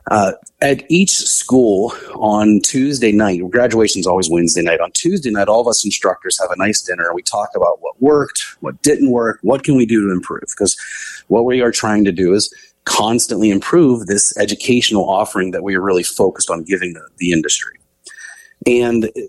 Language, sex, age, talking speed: English, male, 30-49, 195 wpm